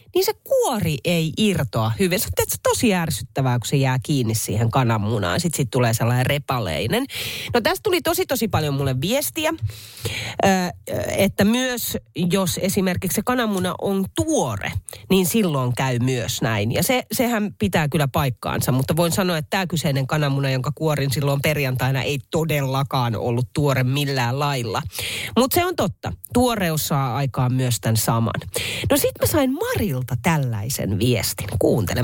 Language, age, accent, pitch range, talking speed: Finnish, 30-49, native, 125-185 Hz, 155 wpm